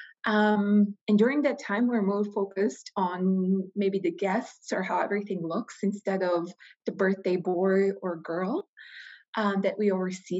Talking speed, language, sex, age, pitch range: 155 wpm, English, female, 20-39, 185-230 Hz